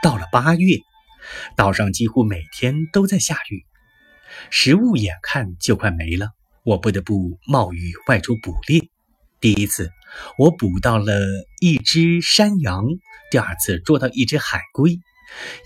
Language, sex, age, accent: Chinese, male, 30-49, native